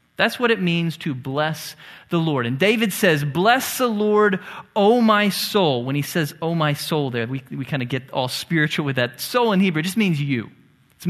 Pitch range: 155-220 Hz